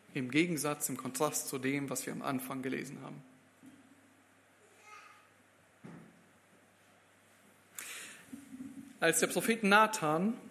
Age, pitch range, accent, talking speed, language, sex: 40-59, 150-250 Hz, German, 90 wpm, German, male